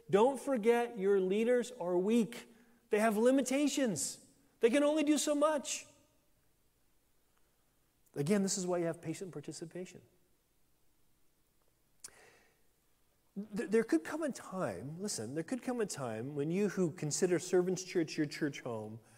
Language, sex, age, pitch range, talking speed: English, male, 40-59, 150-225 Hz, 135 wpm